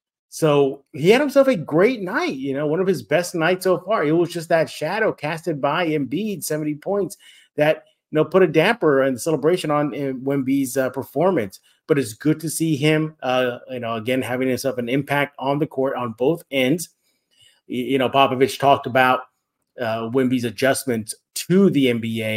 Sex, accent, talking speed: male, American, 185 wpm